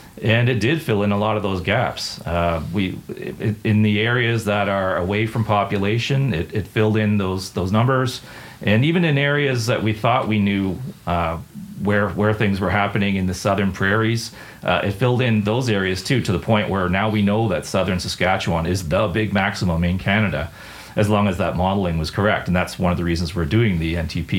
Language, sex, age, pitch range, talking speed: English, male, 40-59, 90-110 Hz, 215 wpm